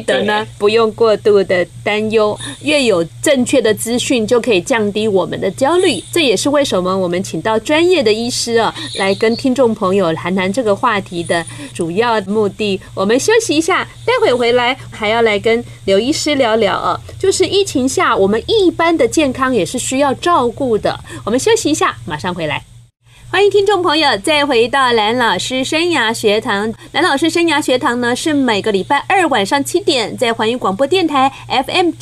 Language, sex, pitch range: Chinese, female, 210-285 Hz